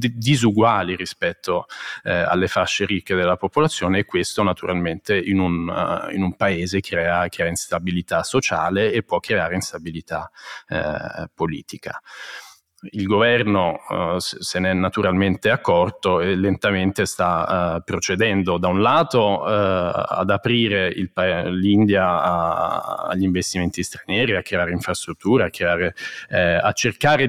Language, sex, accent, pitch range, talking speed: Italian, male, native, 95-110 Hz, 130 wpm